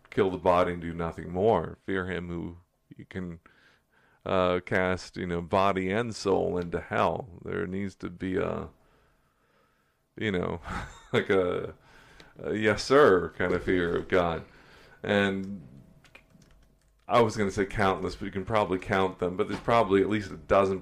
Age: 40-59